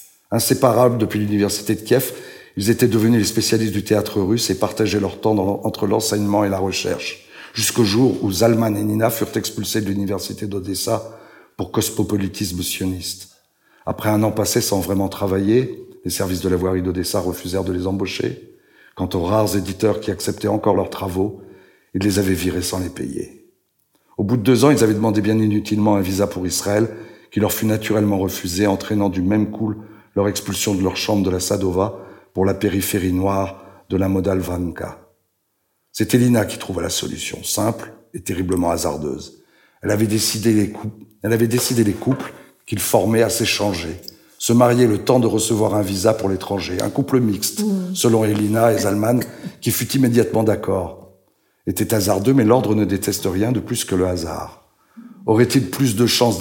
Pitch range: 95-110 Hz